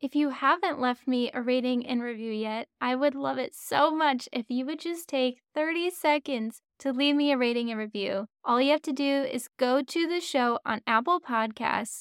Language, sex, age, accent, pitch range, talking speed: English, female, 10-29, American, 235-285 Hz, 215 wpm